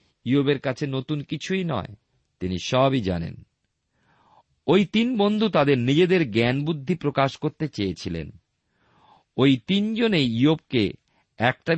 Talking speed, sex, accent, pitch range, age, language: 110 wpm, male, native, 105-150 Hz, 50-69, Bengali